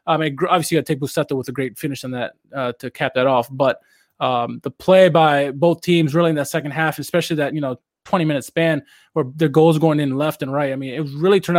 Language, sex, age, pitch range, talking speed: English, male, 20-39, 150-180 Hz, 265 wpm